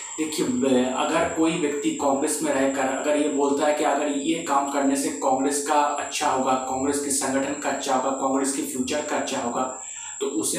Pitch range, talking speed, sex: 135-155 Hz, 200 wpm, male